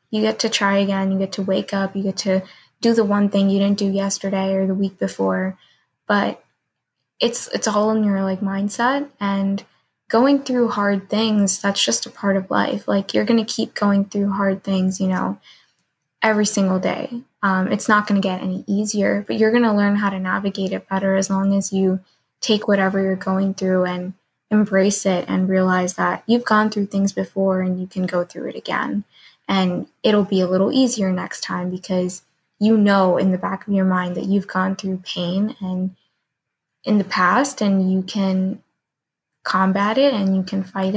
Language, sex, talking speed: English, female, 200 wpm